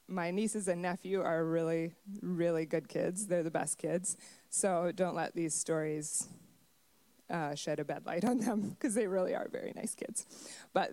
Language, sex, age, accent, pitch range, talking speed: English, female, 20-39, American, 170-220 Hz, 180 wpm